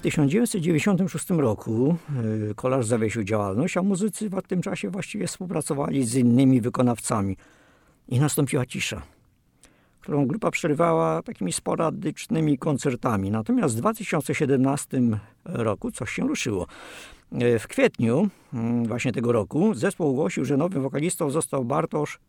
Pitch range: 110-155 Hz